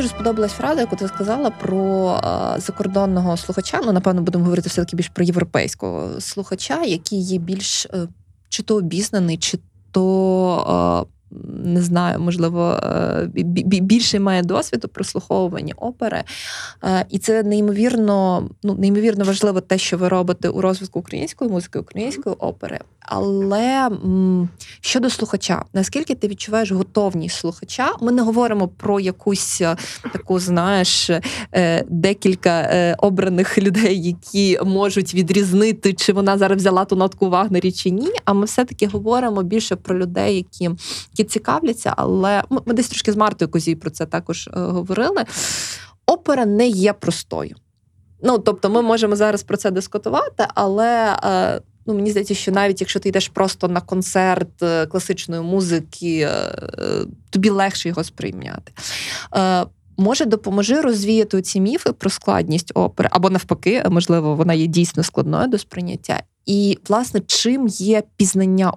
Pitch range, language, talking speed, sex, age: 180-210 Hz, Ukrainian, 140 wpm, female, 20-39